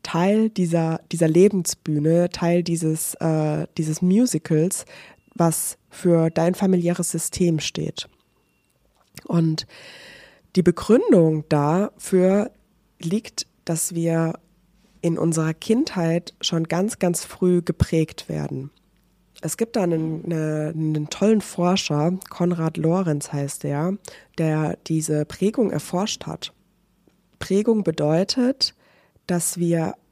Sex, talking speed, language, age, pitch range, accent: female, 100 wpm, German, 20-39, 160-190 Hz, German